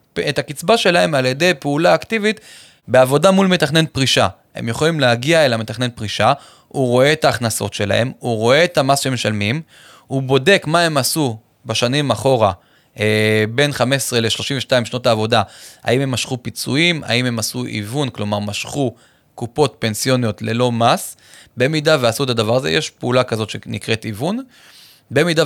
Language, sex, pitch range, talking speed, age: Hebrew, male, 115-155 Hz, 155 wpm, 20-39